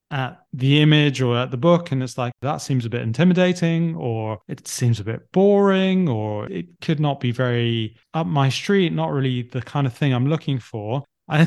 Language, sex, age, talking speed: English, male, 20-39, 210 wpm